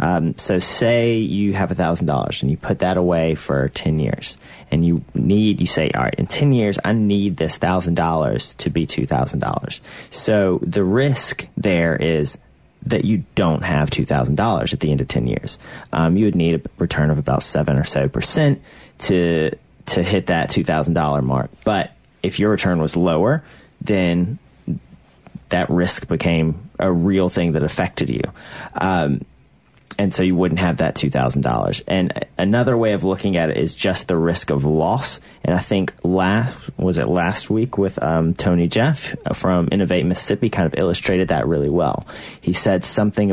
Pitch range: 80-100 Hz